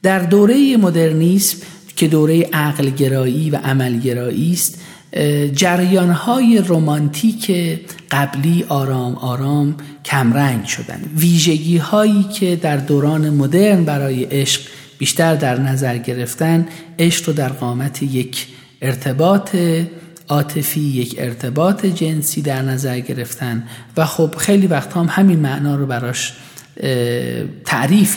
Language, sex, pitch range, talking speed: Persian, male, 130-170 Hz, 110 wpm